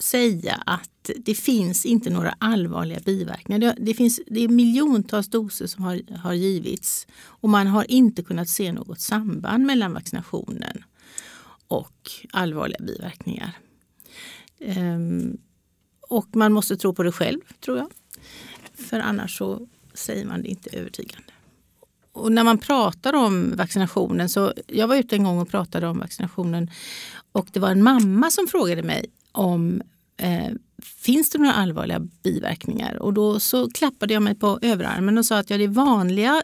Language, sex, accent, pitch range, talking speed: Swedish, female, native, 190-235 Hz, 155 wpm